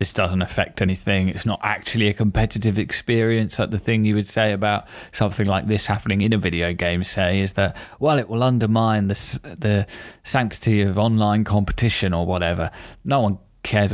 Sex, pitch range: male, 95-110 Hz